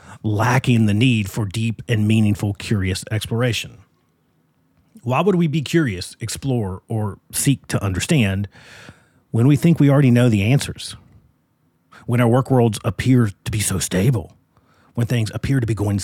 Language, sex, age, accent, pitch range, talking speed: English, male, 40-59, American, 100-125 Hz, 155 wpm